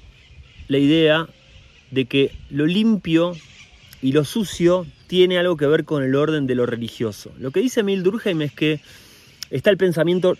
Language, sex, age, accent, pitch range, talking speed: Spanish, male, 30-49, Argentinian, 125-180 Hz, 165 wpm